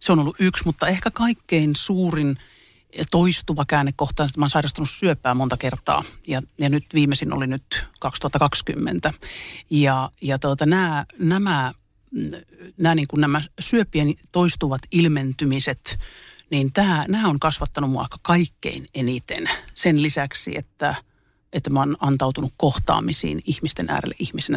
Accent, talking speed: native, 130 wpm